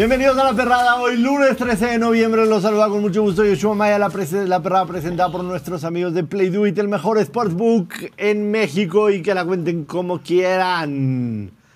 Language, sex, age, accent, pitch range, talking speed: Spanish, male, 50-69, Mexican, 155-200 Hz, 180 wpm